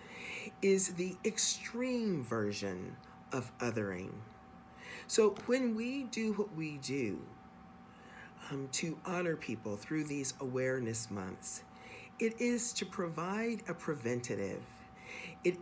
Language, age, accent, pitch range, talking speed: English, 40-59, American, 120-195 Hz, 110 wpm